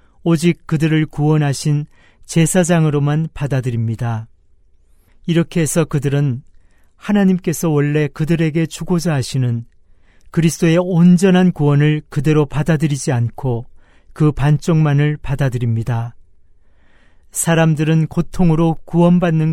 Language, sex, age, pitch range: Korean, male, 40-59, 115-165 Hz